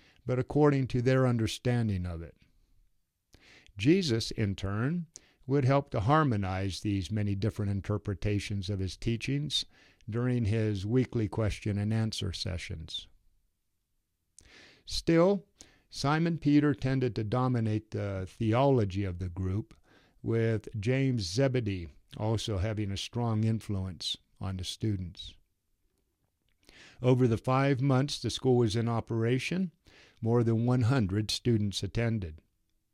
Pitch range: 100-125 Hz